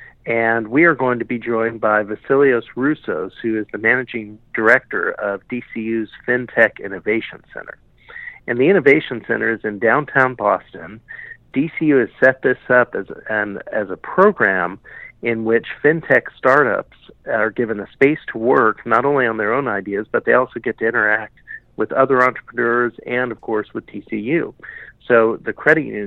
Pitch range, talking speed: 110-130 Hz, 165 wpm